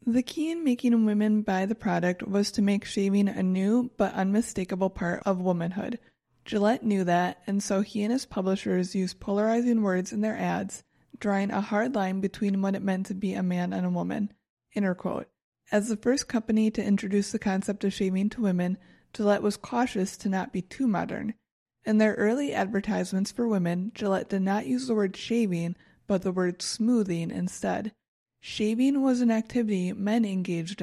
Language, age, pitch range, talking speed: English, 30-49, 190-220 Hz, 180 wpm